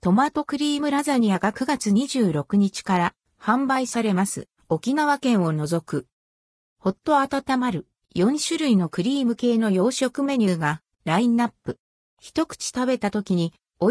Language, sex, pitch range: Japanese, female, 185-260 Hz